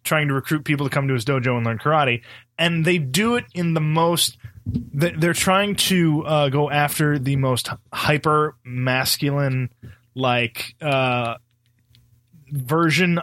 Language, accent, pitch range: English, American, 120-150 Hz